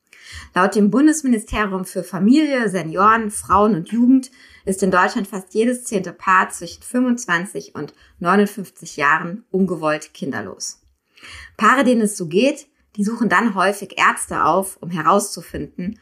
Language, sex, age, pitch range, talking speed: German, female, 20-39, 180-230 Hz, 135 wpm